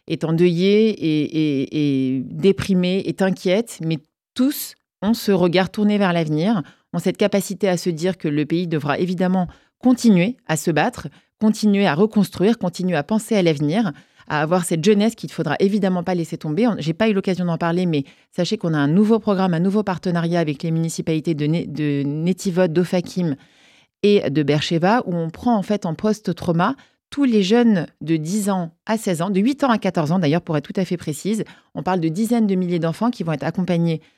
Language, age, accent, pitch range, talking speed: French, 30-49, French, 155-205 Hz, 205 wpm